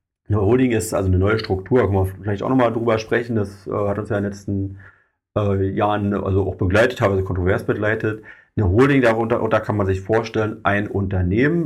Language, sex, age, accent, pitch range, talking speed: German, male, 30-49, German, 95-115 Hz, 220 wpm